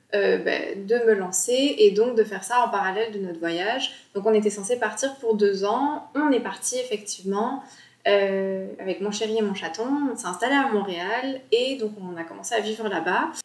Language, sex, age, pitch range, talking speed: French, female, 20-39, 200-250 Hz, 210 wpm